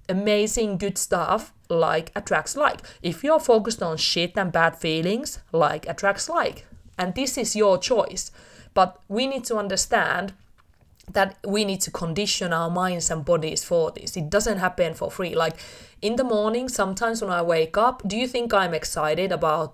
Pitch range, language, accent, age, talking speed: 170-230 Hz, English, Finnish, 30-49, 175 wpm